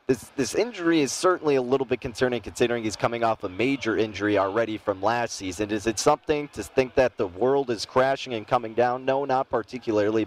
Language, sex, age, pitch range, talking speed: English, male, 30-49, 110-135 Hz, 210 wpm